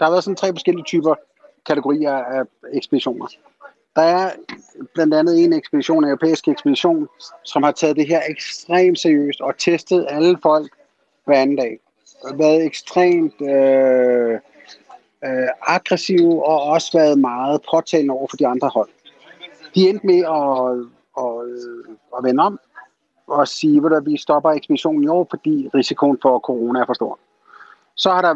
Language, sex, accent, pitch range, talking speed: Danish, male, native, 135-175 Hz, 165 wpm